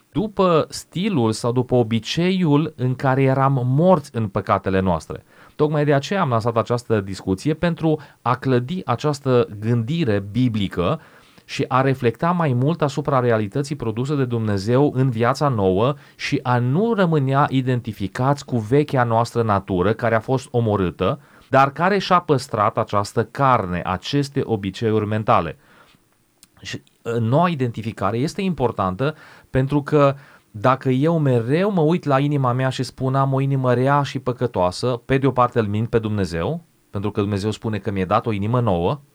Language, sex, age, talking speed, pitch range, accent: Romanian, male, 30-49, 155 wpm, 110-145 Hz, native